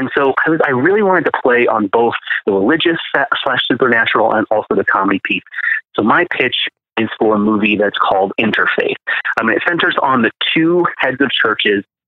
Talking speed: 190 wpm